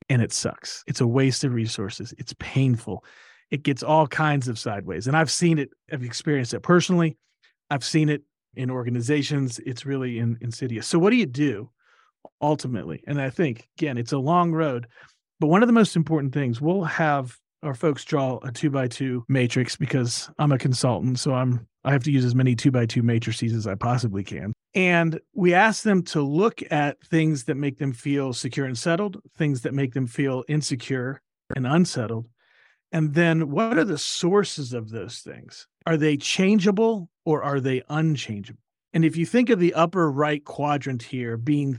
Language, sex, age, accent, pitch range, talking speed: English, male, 40-59, American, 125-155 Hz, 185 wpm